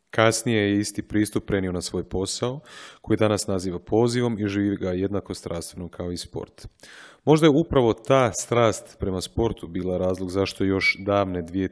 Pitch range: 95-115 Hz